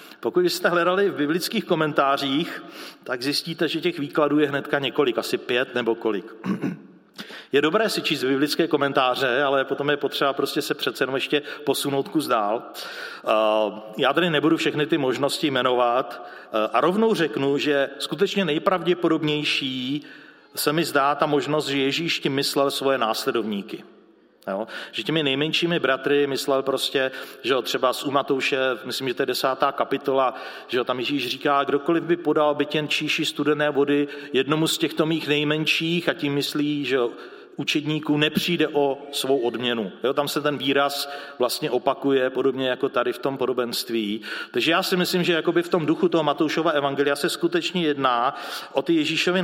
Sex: male